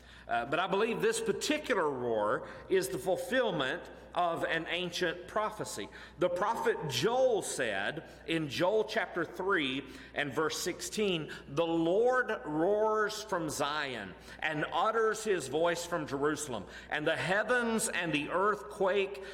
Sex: male